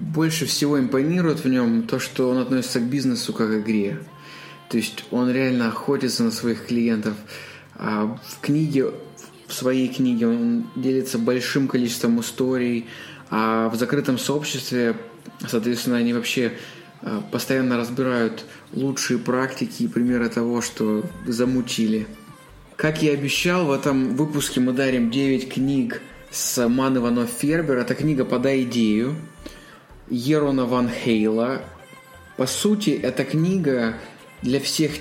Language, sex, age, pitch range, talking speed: Russian, male, 20-39, 120-145 Hz, 130 wpm